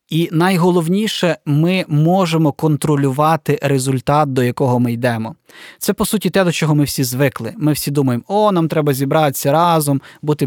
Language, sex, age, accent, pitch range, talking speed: Ukrainian, male, 20-39, native, 135-160 Hz, 160 wpm